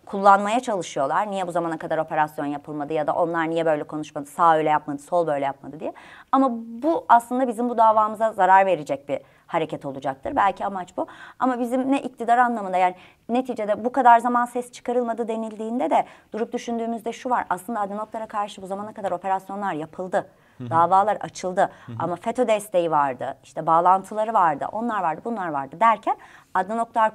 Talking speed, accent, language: 170 wpm, native, Turkish